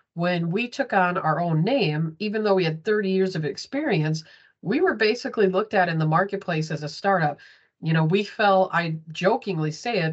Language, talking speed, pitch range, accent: English, 200 wpm, 160-200 Hz, American